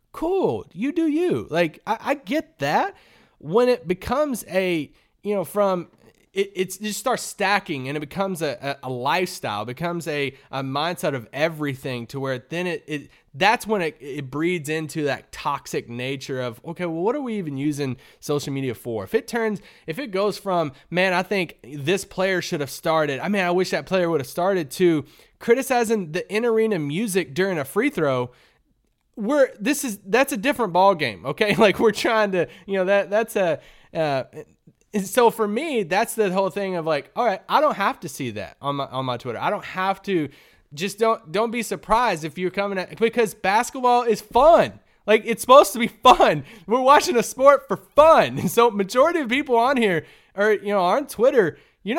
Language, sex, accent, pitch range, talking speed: English, male, American, 155-230 Hz, 205 wpm